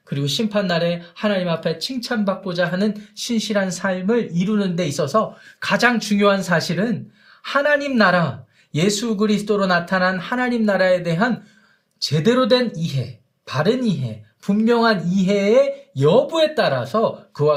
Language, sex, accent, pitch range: Korean, male, native, 155-215 Hz